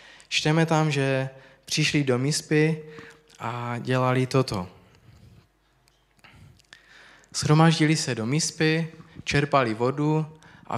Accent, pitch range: native, 130-150 Hz